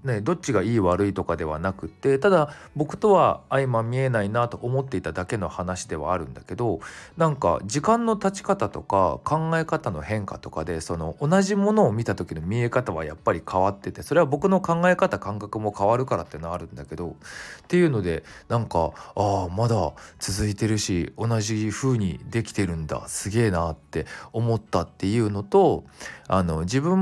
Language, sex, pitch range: Japanese, male, 90-150 Hz